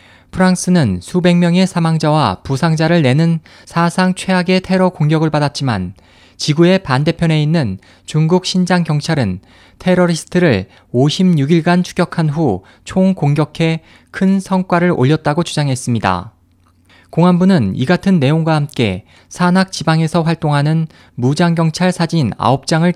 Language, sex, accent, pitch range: Korean, male, native, 120-175 Hz